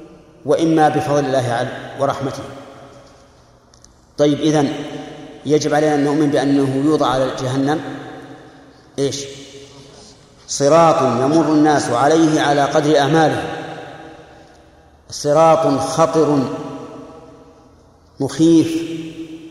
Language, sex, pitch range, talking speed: Arabic, male, 135-160 Hz, 80 wpm